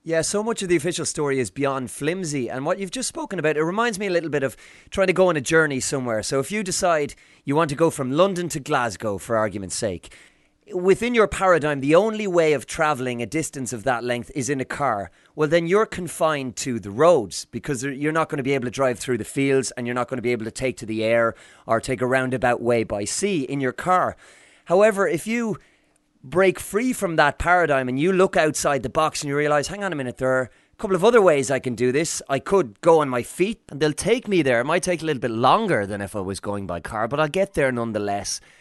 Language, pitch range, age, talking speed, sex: English, 125-165 Hz, 30-49, 255 wpm, male